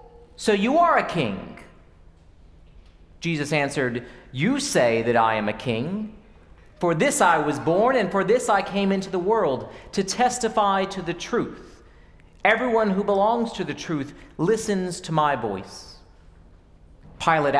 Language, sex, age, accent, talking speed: English, male, 40-59, American, 145 wpm